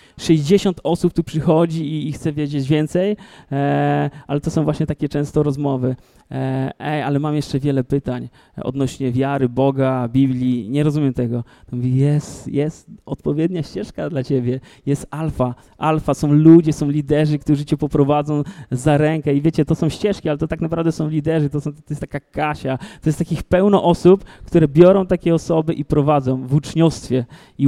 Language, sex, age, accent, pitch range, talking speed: Polish, male, 20-39, native, 145-170 Hz, 175 wpm